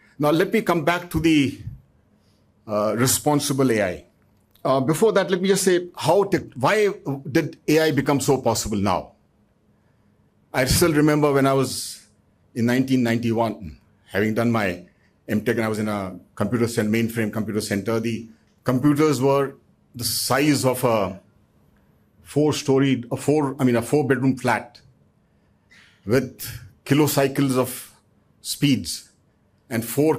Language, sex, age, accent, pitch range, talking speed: English, male, 50-69, Indian, 105-145 Hz, 135 wpm